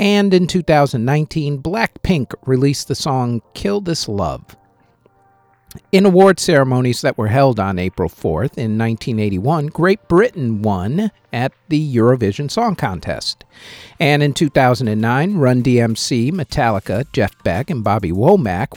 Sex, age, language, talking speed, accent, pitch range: male, 50-69, English, 125 wpm, American, 115-160 Hz